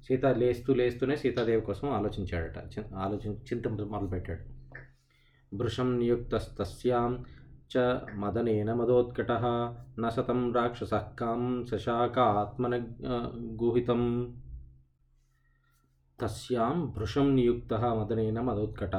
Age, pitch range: 20-39, 100-125 Hz